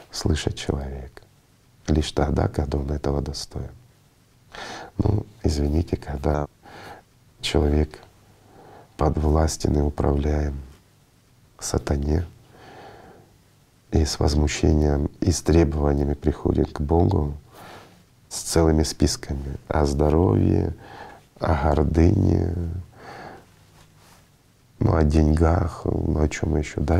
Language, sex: Russian, male